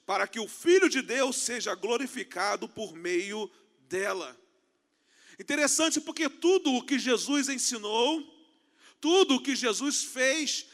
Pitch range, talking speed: 265-335 Hz, 130 wpm